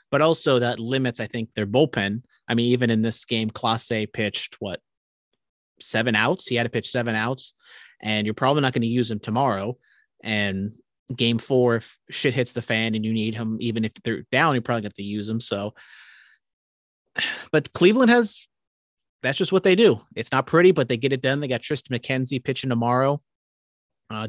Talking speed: 200 wpm